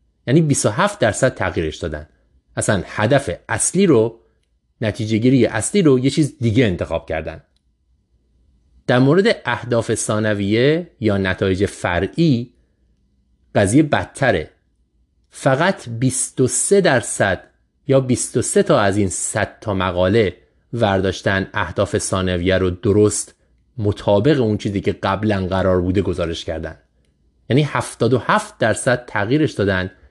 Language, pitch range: Persian, 85-125 Hz